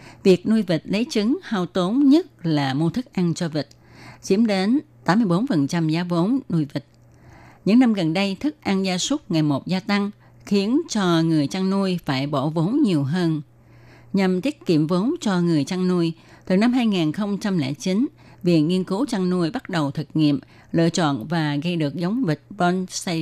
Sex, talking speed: female, 185 wpm